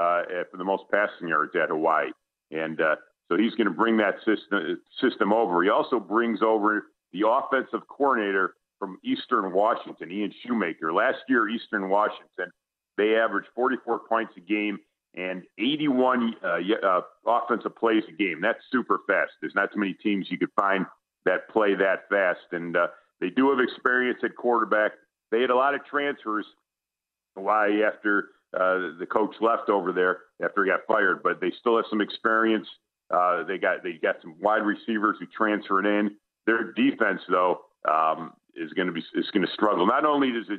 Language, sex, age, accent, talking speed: English, male, 50-69, American, 180 wpm